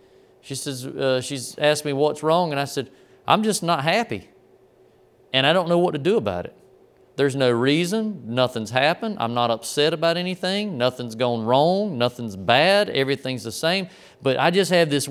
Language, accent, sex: English, American, male